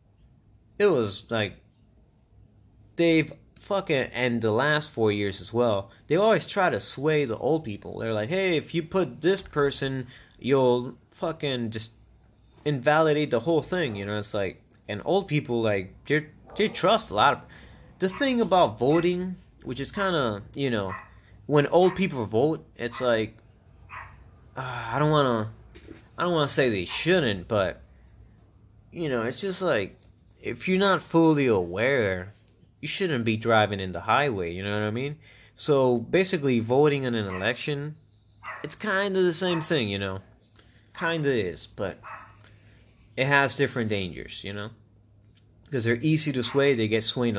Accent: American